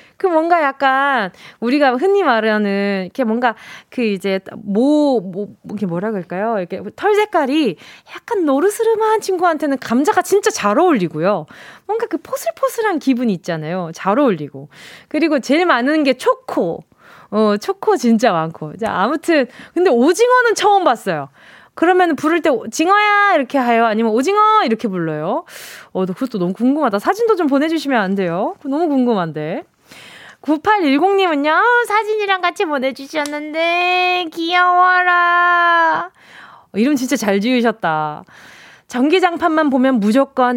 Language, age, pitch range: Korean, 20-39, 210-345 Hz